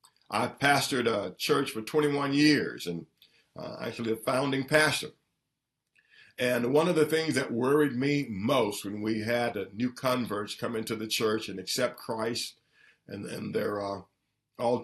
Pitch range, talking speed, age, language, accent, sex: 110-140 Hz, 160 wpm, 50-69, English, American, male